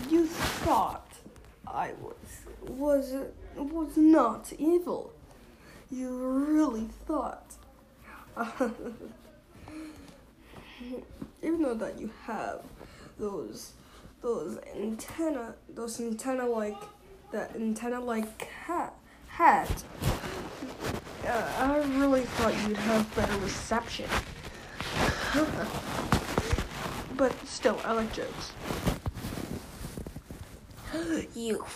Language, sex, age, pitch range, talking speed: English, female, 20-39, 230-320 Hz, 75 wpm